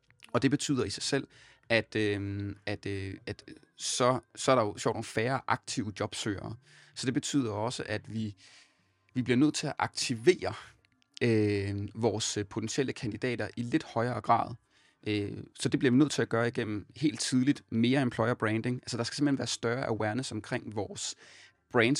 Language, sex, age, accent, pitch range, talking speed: Danish, male, 30-49, native, 105-130 Hz, 180 wpm